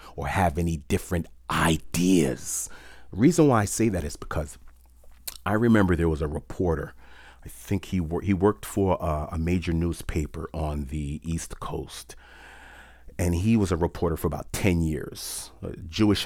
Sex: male